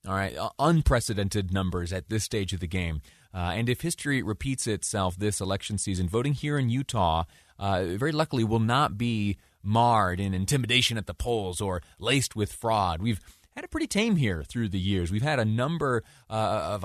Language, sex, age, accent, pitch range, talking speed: English, male, 30-49, American, 95-125 Hz, 190 wpm